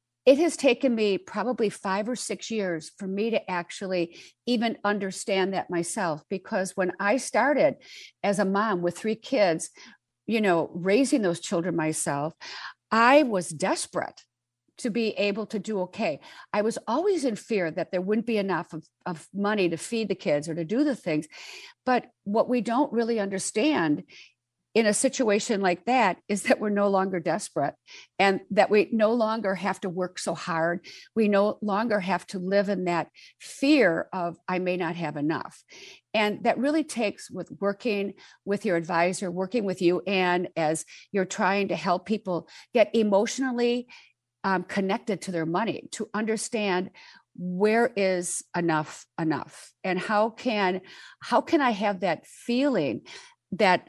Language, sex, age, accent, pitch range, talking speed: English, female, 50-69, American, 180-230 Hz, 165 wpm